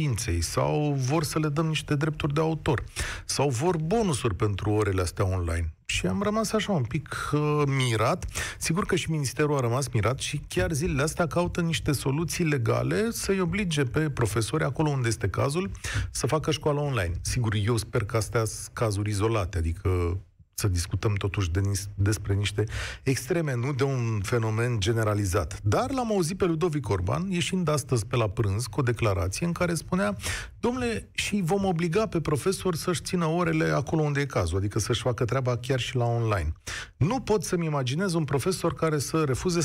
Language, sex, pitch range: Romanian, male, 105-170 Hz